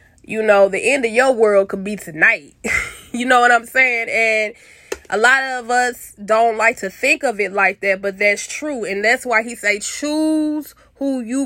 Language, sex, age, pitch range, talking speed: English, female, 20-39, 200-250 Hz, 205 wpm